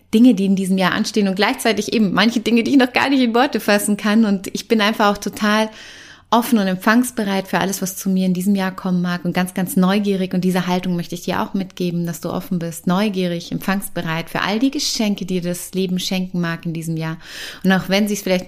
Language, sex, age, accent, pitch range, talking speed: German, female, 30-49, German, 170-195 Hz, 250 wpm